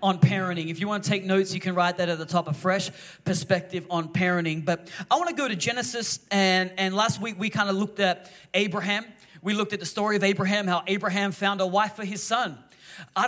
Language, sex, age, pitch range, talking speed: English, male, 30-49, 190-230 Hz, 240 wpm